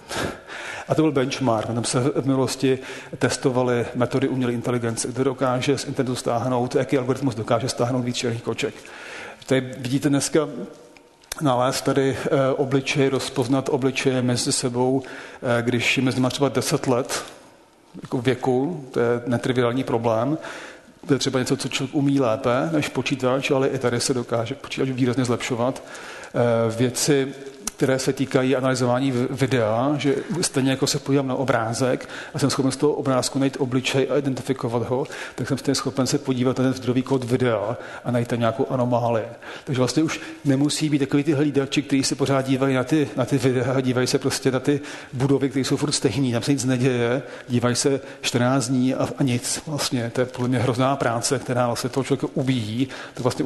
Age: 40-59